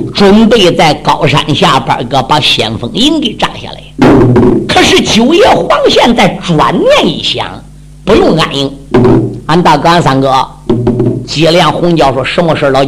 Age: 50-69